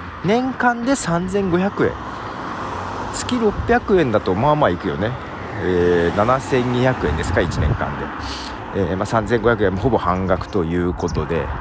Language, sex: Japanese, male